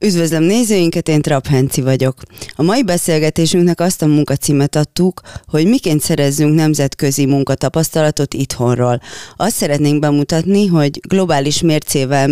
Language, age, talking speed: Hungarian, 30-49, 120 wpm